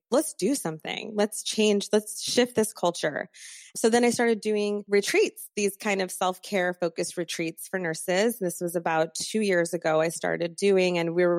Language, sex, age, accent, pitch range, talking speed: English, female, 20-39, American, 170-200 Hz, 185 wpm